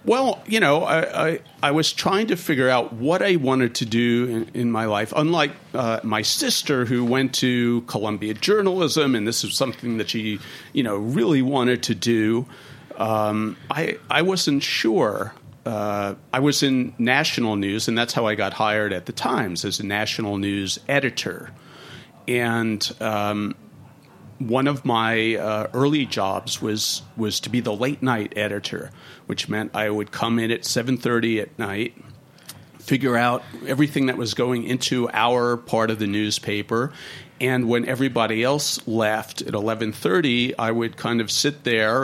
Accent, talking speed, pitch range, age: American, 165 wpm, 110-130 Hz, 40-59